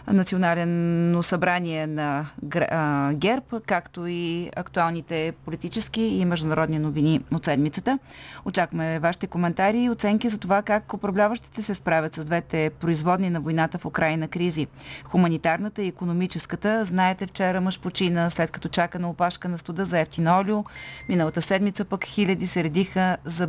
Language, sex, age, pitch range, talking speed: Bulgarian, female, 30-49, 170-210 Hz, 140 wpm